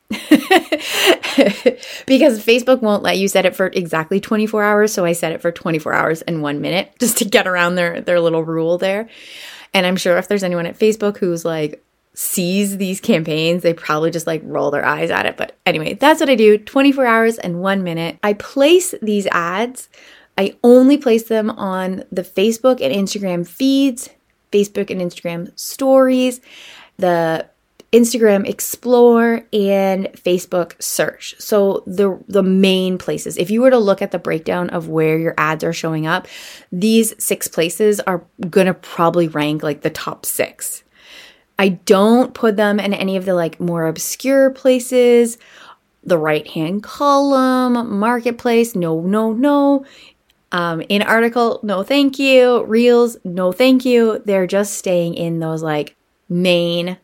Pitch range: 175-240 Hz